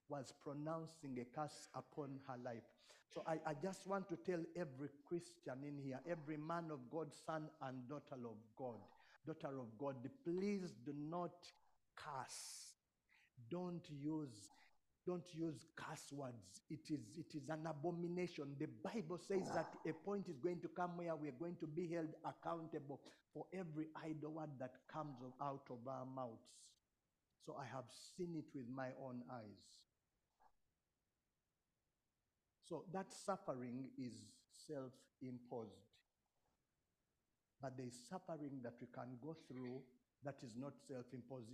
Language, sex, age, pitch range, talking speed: English, male, 50-69, 130-165 Hz, 145 wpm